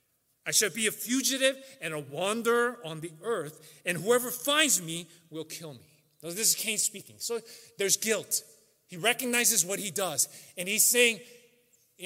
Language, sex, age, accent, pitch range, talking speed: English, male, 30-49, American, 130-210 Hz, 170 wpm